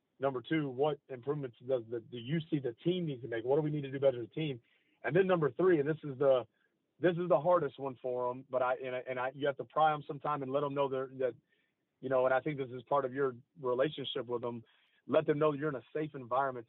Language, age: English, 40-59